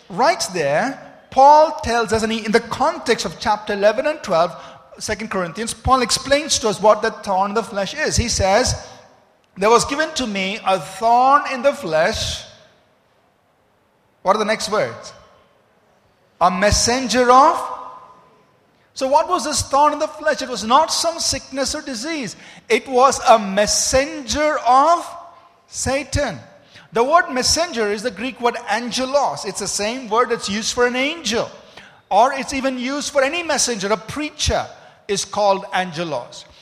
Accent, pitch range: Indian, 210-275 Hz